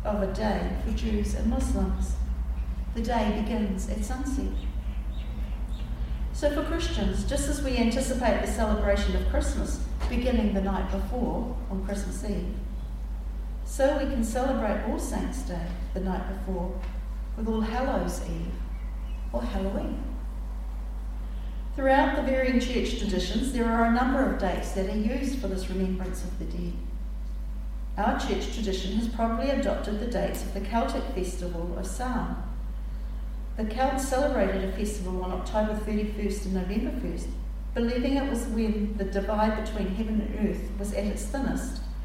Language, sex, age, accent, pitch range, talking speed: English, female, 40-59, Australian, 185-240 Hz, 150 wpm